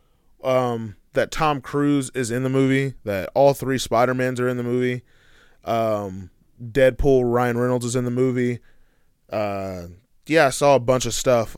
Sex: male